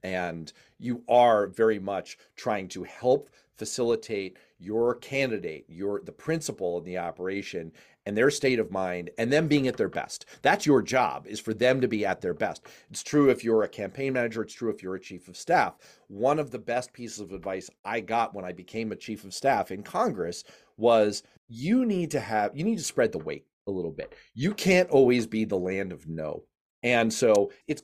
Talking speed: 210 wpm